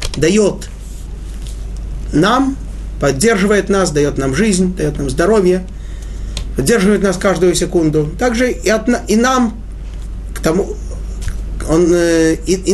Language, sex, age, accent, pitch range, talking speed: Russian, male, 30-49, native, 145-200 Hz, 100 wpm